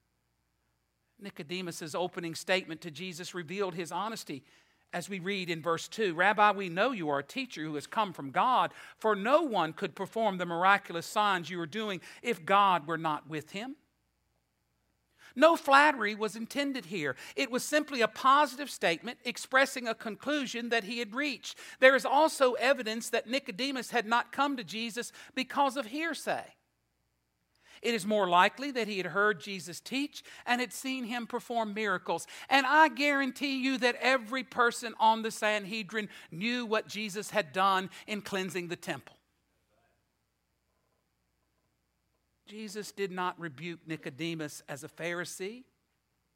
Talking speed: 155 wpm